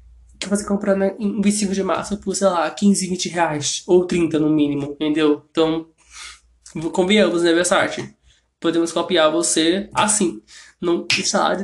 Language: Portuguese